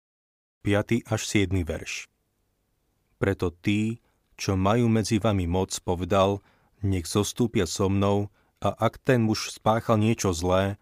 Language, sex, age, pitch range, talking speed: Slovak, male, 40-59, 95-110 Hz, 130 wpm